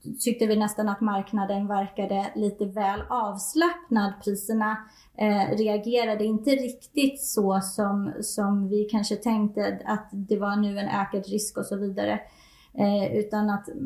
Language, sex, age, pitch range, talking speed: Swedish, female, 20-39, 205-245 Hz, 145 wpm